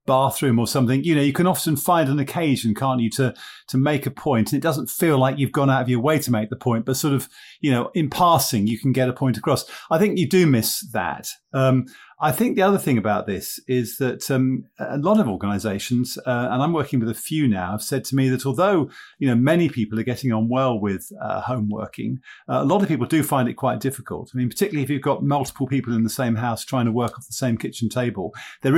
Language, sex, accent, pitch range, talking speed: English, male, British, 115-140 Hz, 260 wpm